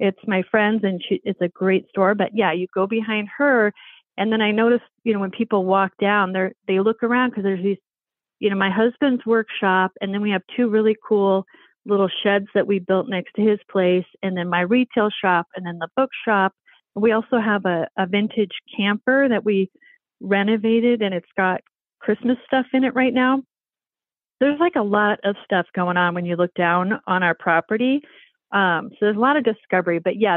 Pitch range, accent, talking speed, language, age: 185-225 Hz, American, 210 wpm, English, 40-59